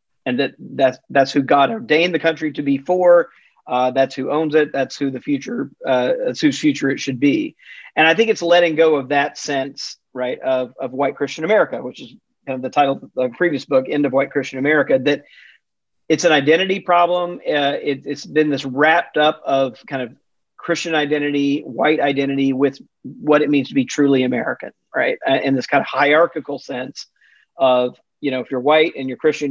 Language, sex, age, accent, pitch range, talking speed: English, male, 40-59, American, 135-160 Hz, 205 wpm